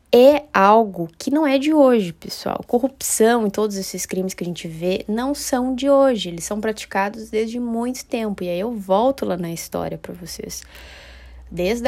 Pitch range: 180-235 Hz